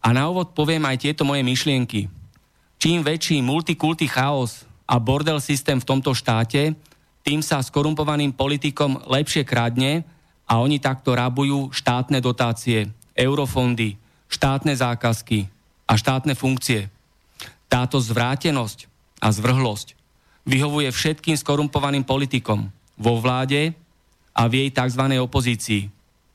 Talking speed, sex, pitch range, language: 115 wpm, male, 115-140 Hz, Slovak